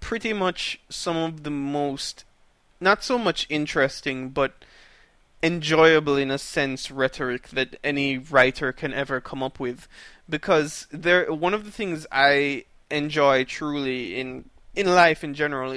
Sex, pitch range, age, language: male, 140-175 Hz, 20-39, English